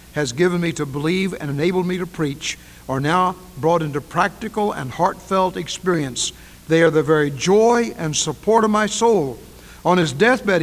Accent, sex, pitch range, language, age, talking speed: American, male, 115-170 Hz, English, 60-79, 175 wpm